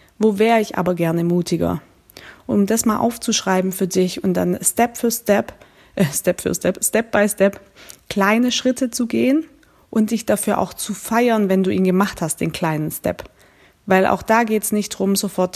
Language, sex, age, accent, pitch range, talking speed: German, female, 20-39, German, 190-240 Hz, 195 wpm